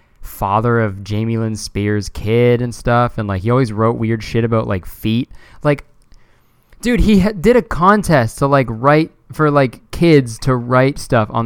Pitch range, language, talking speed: 110-145 Hz, English, 180 wpm